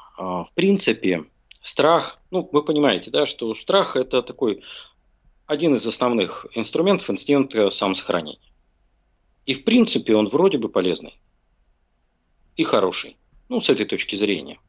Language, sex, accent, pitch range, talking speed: Russian, male, native, 100-145 Hz, 125 wpm